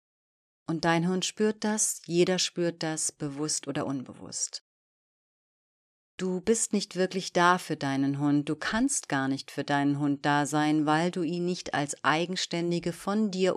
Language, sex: German, female